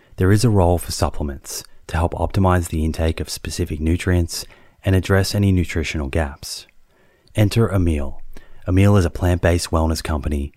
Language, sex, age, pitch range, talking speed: English, male, 30-49, 80-95 Hz, 155 wpm